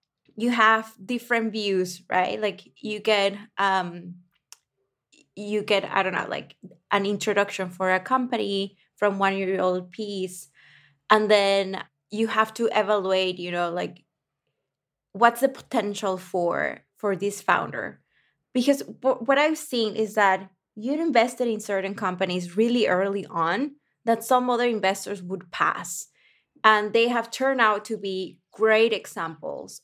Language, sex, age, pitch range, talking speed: English, female, 20-39, 185-225 Hz, 140 wpm